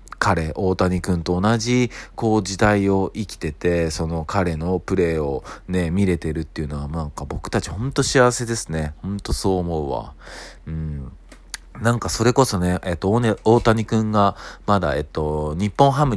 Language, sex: Japanese, male